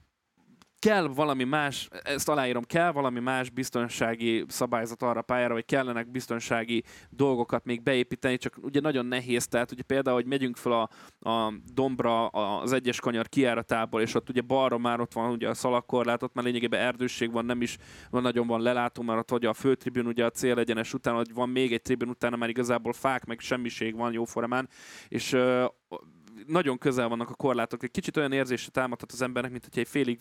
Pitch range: 115-130 Hz